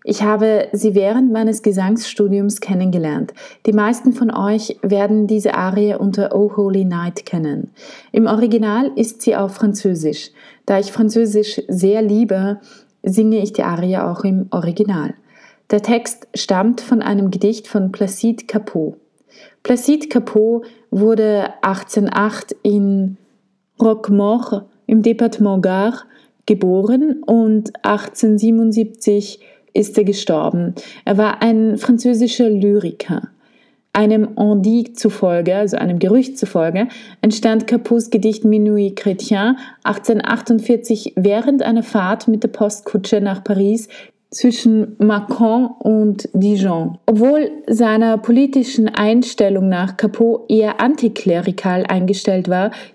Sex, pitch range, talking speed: female, 200-230 Hz, 115 wpm